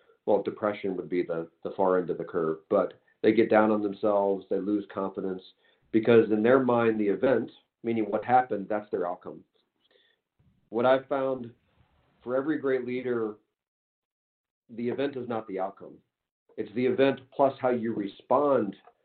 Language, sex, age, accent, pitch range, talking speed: English, male, 50-69, American, 105-140 Hz, 165 wpm